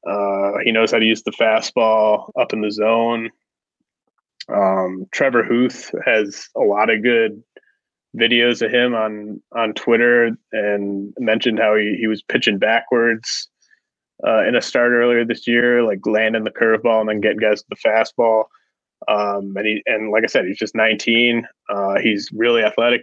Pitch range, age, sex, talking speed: 105-120 Hz, 20-39, male, 170 wpm